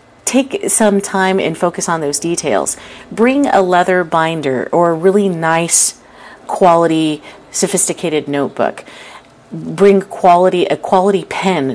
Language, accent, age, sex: English, American, 30-49, female